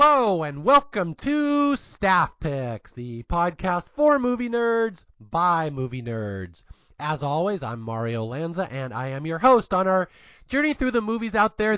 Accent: American